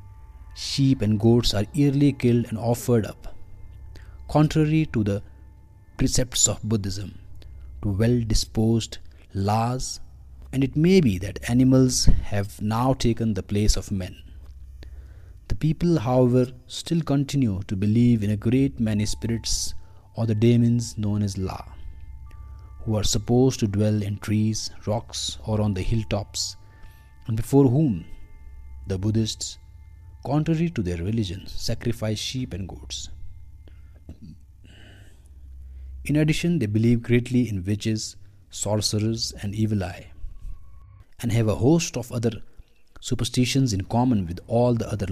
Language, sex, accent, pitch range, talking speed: Hindi, male, native, 90-120 Hz, 130 wpm